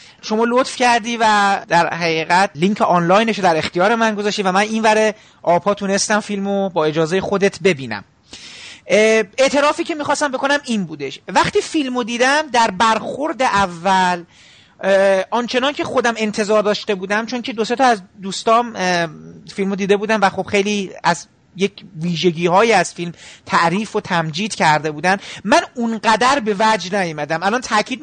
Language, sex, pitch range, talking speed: Persian, male, 190-245 Hz, 150 wpm